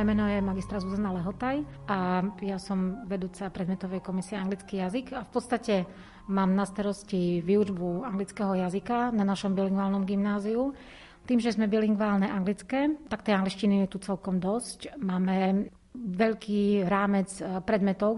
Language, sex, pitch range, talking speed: Slovak, female, 190-210 Hz, 140 wpm